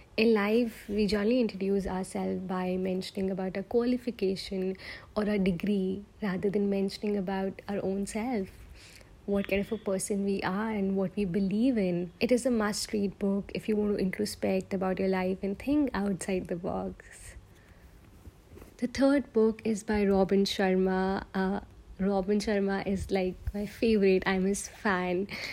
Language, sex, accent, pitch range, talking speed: English, female, Indian, 190-205 Hz, 160 wpm